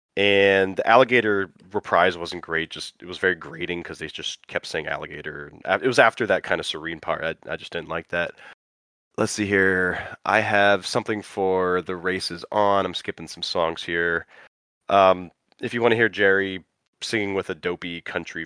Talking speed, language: 190 wpm, English